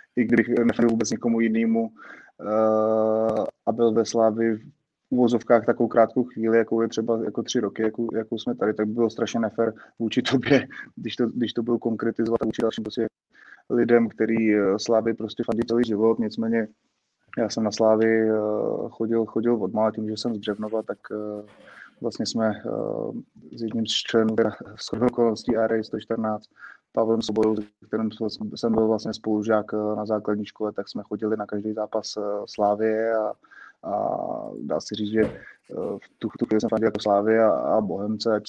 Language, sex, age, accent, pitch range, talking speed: Czech, male, 20-39, native, 110-115 Hz, 165 wpm